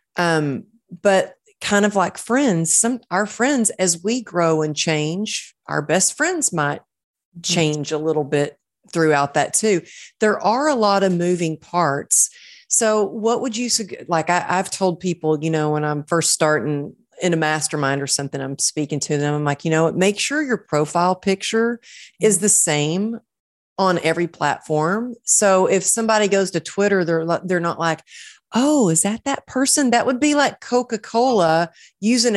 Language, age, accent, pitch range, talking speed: English, 40-59, American, 155-215 Hz, 170 wpm